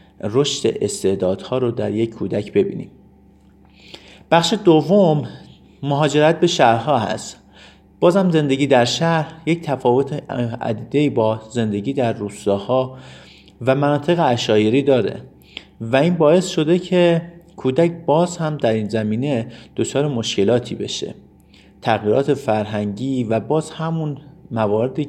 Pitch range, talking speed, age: 105-155 Hz, 115 wpm, 50-69